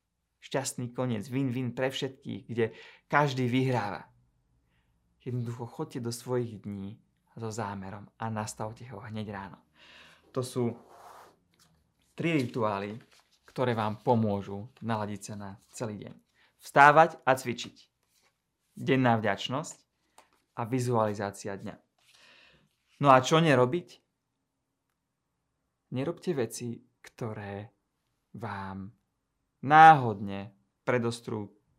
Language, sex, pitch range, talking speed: English, male, 110-150 Hz, 95 wpm